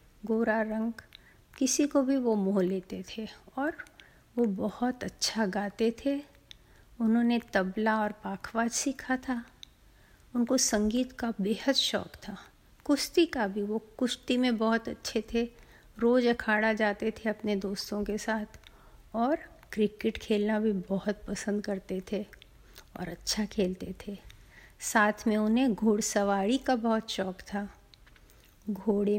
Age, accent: 50-69, native